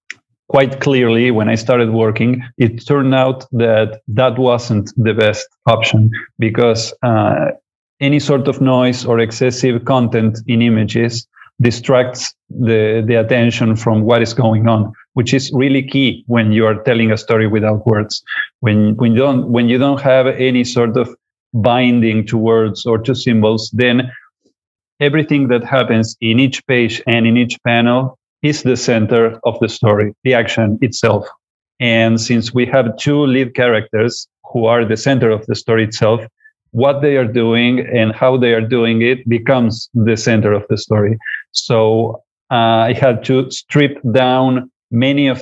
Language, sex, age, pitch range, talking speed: French, male, 40-59, 115-130 Hz, 165 wpm